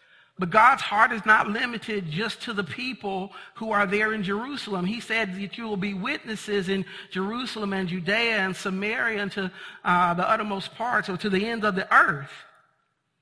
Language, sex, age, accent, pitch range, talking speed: English, male, 50-69, American, 165-210 Hz, 185 wpm